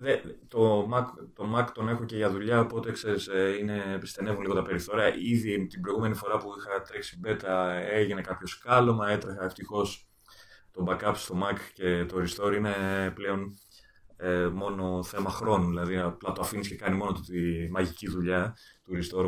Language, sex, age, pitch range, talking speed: Greek, male, 30-49, 90-115 Hz, 170 wpm